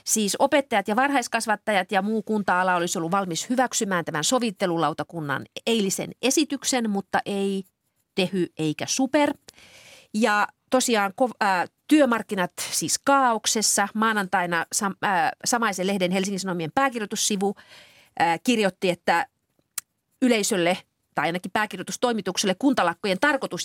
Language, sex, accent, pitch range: Finnish, female, native, 185-240 Hz